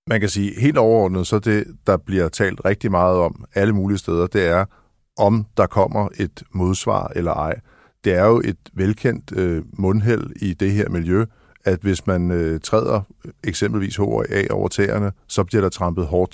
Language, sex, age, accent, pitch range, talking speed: Danish, male, 50-69, native, 90-105 Hz, 185 wpm